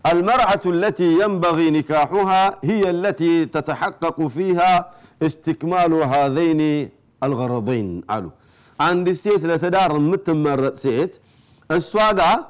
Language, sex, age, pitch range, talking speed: Amharic, male, 50-69, 145-185 Hz, 85 wpm